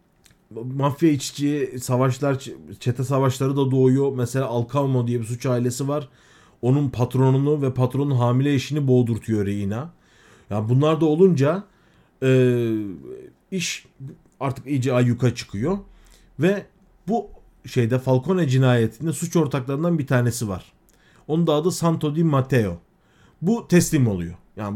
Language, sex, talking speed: Turkish, male, 130 wpm